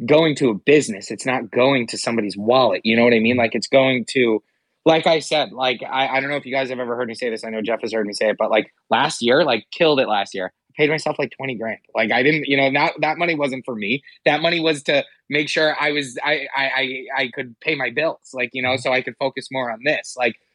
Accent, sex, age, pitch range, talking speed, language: American, male, 20-39, 120-150 Hz, 285 wpm, English